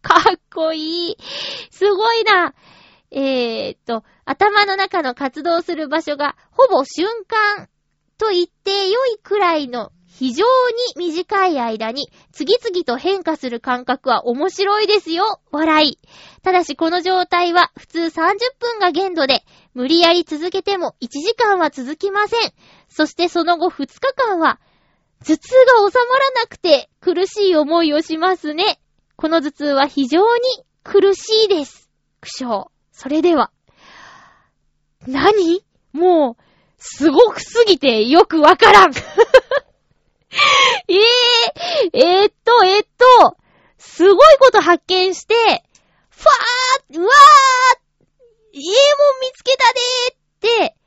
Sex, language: female, Japanese